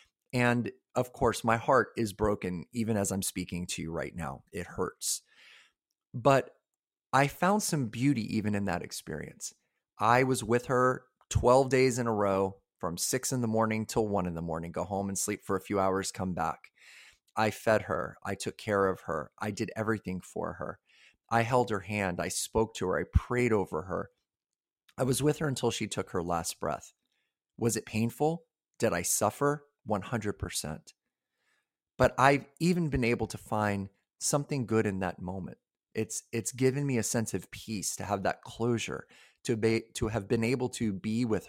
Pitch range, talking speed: 100-130 Hz, 190 wpm